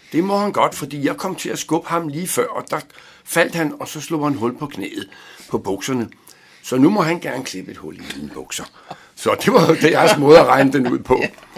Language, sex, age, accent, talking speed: Danish, male, 60-79, native, 250 wpm